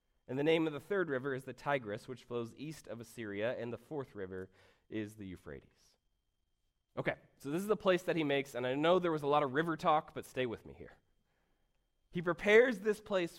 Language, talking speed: English, 225 wpm